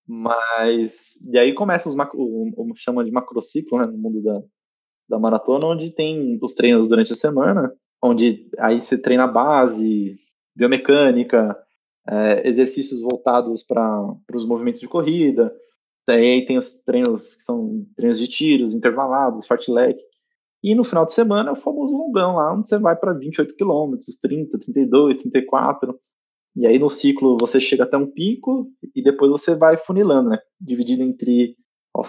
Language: Portuguese